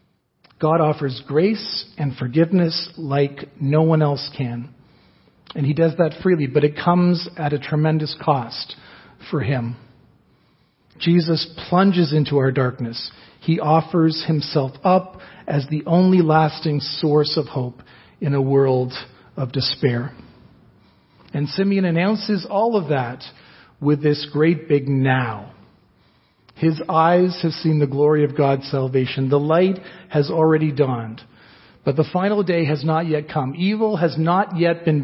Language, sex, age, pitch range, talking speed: English, male, 40-59, 140-170 Hz, 140 wpm